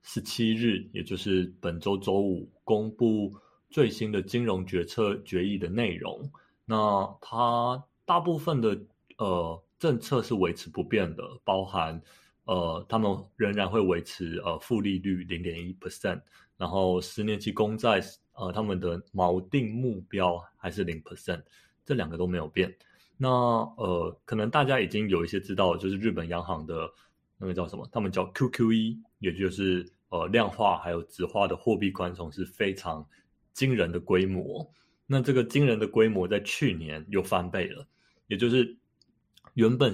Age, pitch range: 20-39, 90-110 Hz